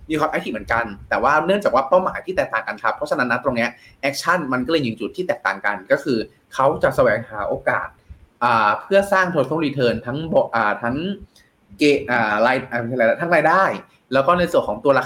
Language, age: Thai, 20-39